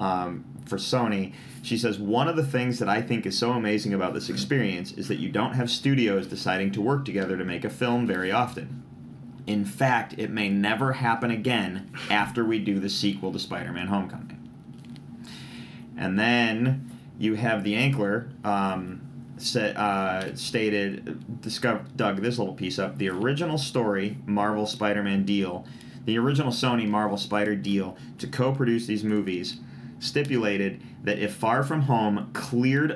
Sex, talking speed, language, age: male, 155 wpm, English, 30-49